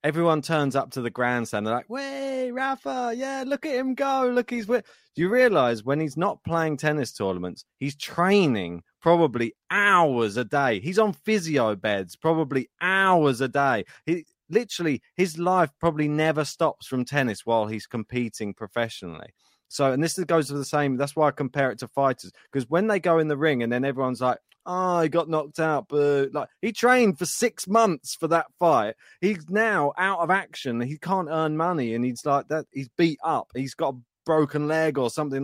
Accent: British